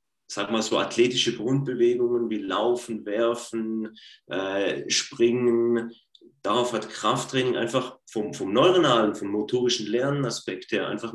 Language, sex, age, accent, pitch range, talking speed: German, male, 30-49, German, 105-135 Hz, 120 wpm